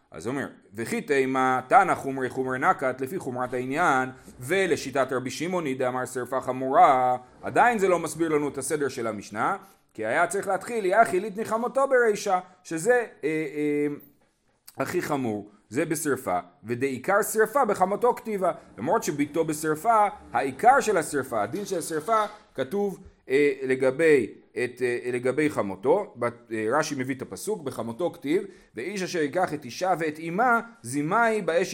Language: Hebrew